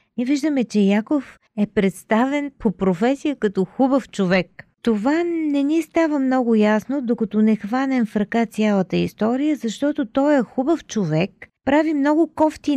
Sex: female